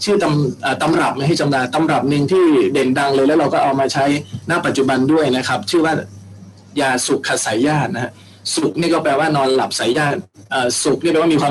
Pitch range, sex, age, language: 125-160 Hz, male, 20-39, Thai